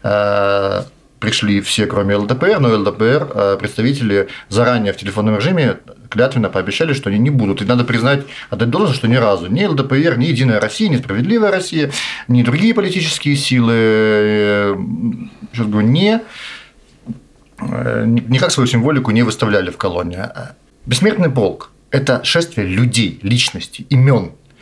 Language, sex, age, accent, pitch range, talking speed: Russian, male, 40-59, native, 110-150 Hz, 130 wpm